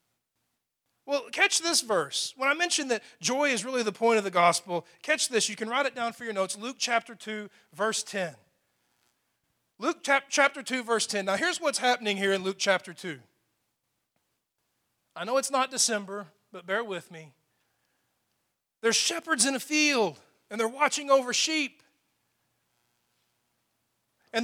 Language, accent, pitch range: English, American, 210-280 Hz